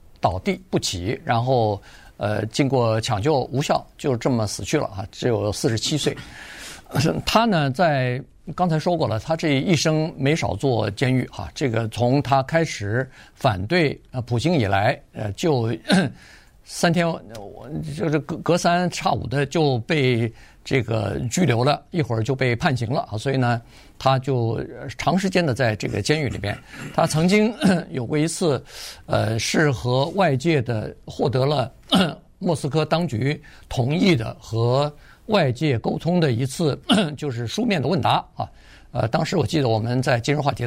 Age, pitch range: 50-69, 120-155 Hz